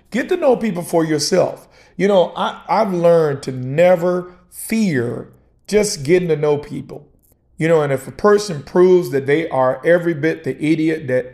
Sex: male